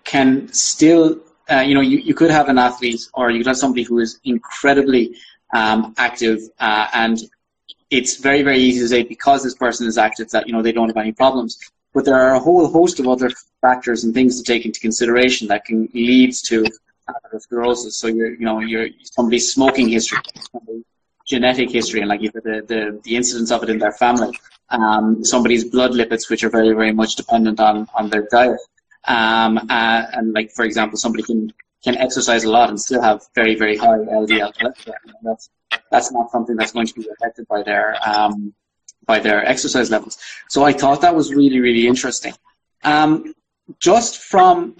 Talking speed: 190 wpm